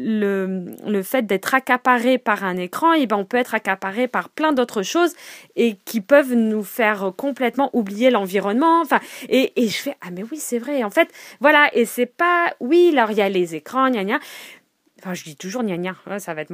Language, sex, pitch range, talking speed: French, female, 205-295 Hz, 220 wpm